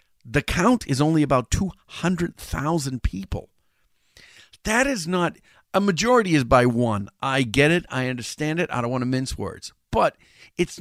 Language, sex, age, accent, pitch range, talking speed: English, male, 50-69, American, 110-155 Hz, 160 wpm